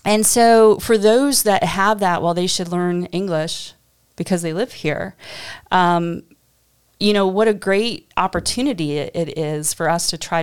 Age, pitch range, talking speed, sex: 30-49, 165-215 Hz, 175 wpm, female